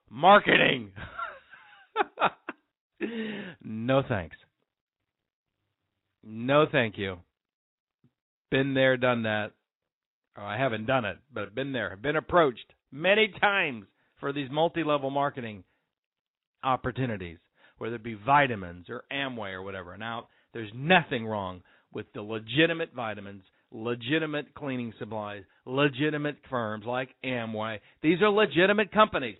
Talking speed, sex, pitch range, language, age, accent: 110 wpm, male, 115-170 Hz, English, 40-59, American